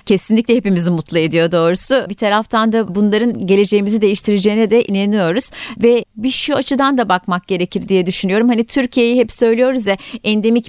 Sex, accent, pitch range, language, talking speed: female, native, 195-235 Hz, Turkish, 155 wpm